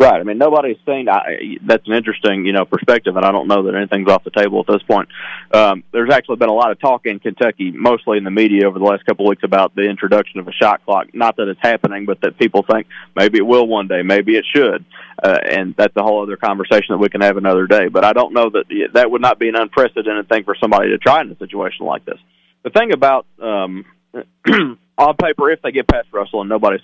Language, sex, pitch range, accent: English, male, 100-120 Hz, American